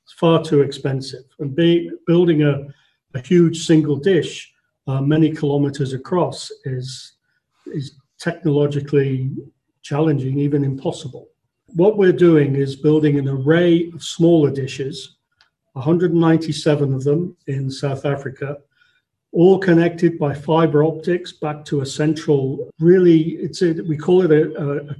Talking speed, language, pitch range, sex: 130 wpm, English, 140-165 Hz, male